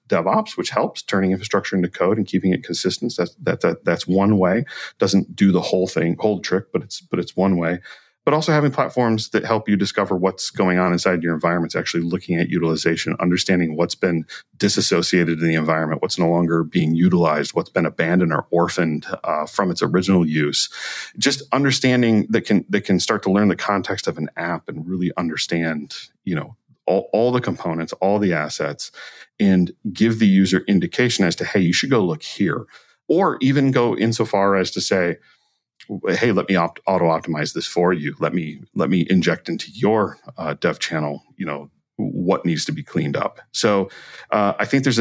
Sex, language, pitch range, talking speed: male, English, 85-105 Hz, 200 wpm